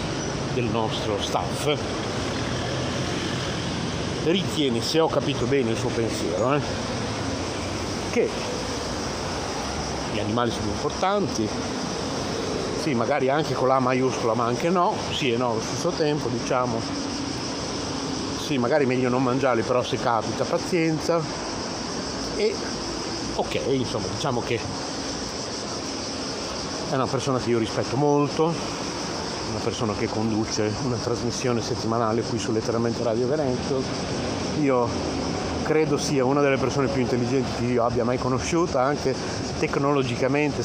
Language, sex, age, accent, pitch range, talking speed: Italian, male, 50-69, native, 115-135 Hz, 120 wpm